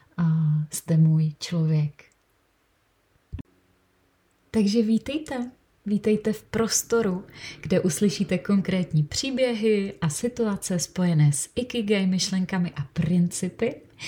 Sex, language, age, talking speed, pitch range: female, Czech, 30-49, 90 wpm, 160-200 Hz